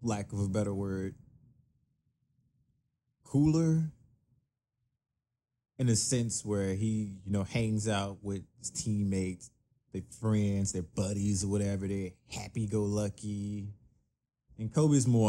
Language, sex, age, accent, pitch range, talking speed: English, male, 20-39, American, 100-125 Hz, 115 wpm